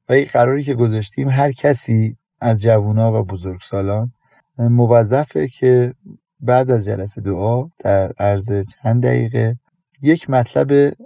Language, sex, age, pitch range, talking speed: Persian, male, 30-49, 110-135 Hz, 120 wpm